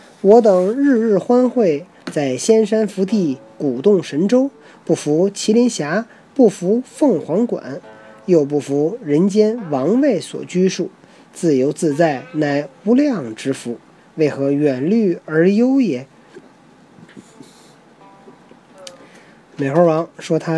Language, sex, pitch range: Chinese, male, 145-220 Hz